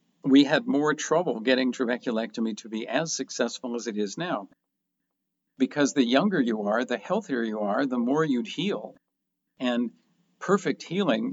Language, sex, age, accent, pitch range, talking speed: English, male, 50-69, American, 115-150 Hz, 160 wpm